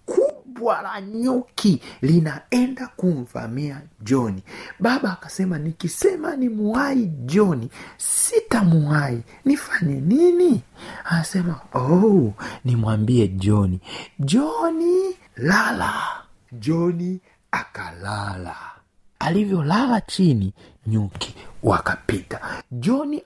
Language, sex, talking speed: Swahili, male, 75 wpm